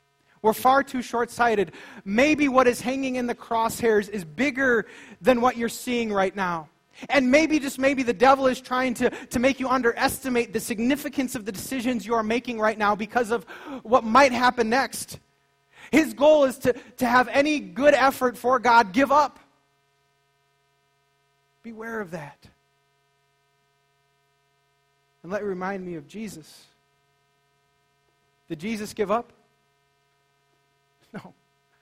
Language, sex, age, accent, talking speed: English, male, 30-49, American, 145 wpm